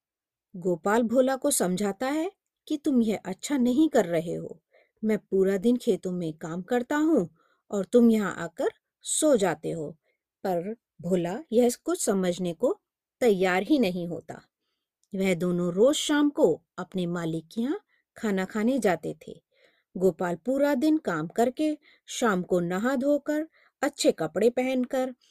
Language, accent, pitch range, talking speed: Hindi, native, 180-260 Hz, 145 wpm